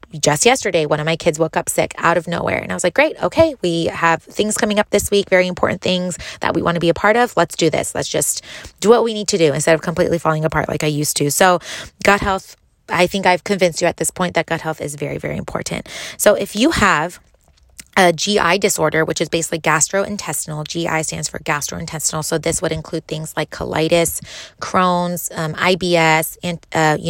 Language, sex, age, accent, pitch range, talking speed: English, female, 20-39, American, 155-195 Hz, 225 wpm